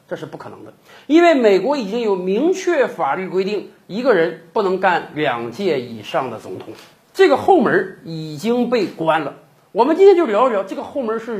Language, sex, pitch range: Chinese, male, 200-335 Hz